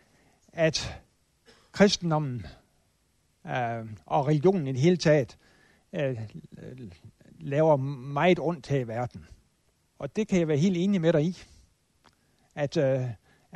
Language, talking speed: Danish, 120 wpm